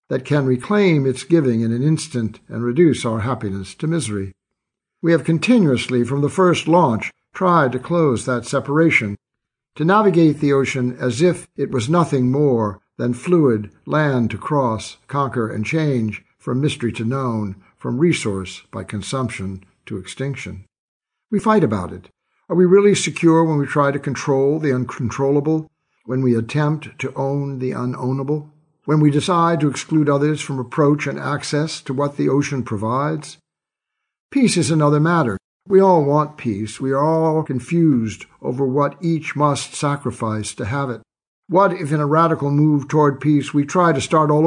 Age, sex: 60-79, male